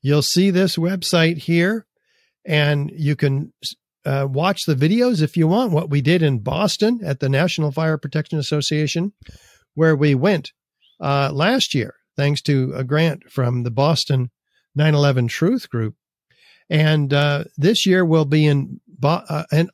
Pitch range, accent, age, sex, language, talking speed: 140-175 Hz, American, 50-69, male, English, 150 wpm